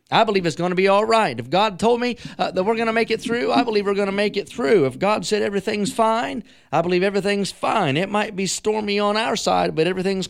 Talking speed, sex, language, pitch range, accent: 270 wpm, male, English, 150-185 Hz, American